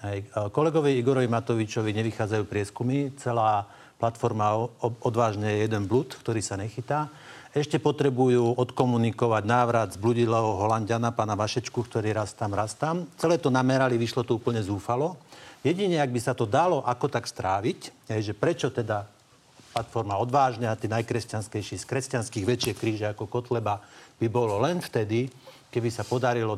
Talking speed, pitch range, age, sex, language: 155 wpm, 110-130 Hz, 50-69, male, Slovak